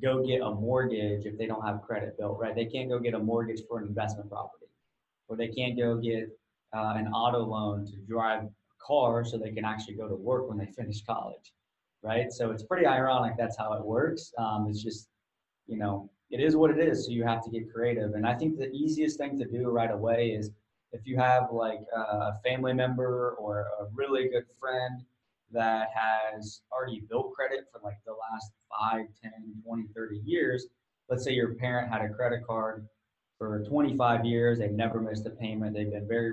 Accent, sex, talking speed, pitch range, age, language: American, male, 210 wpm, 110-120 Hz, 20-39, English